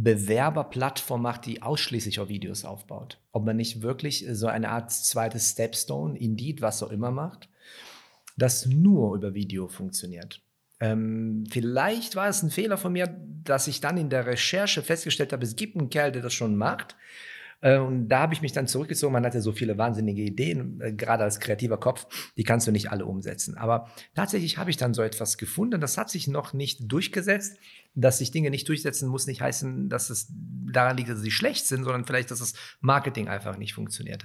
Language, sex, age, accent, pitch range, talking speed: German, male, 40-59, German, 110-135 Hz, 195 wpm